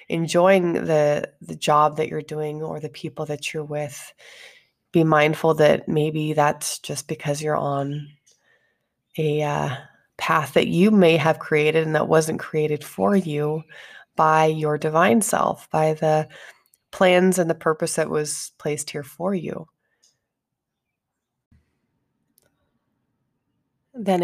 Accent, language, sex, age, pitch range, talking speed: American, English, female, 30-49, 150-165 Hz, 130 wpm